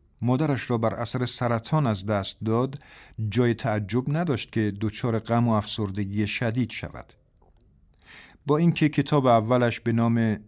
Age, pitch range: 50-69, 110-135 Hz